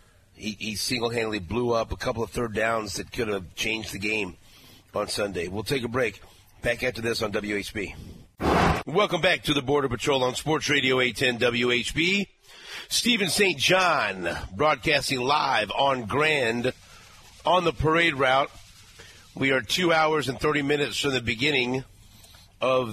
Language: English